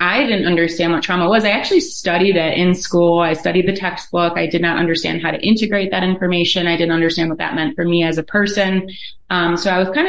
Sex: female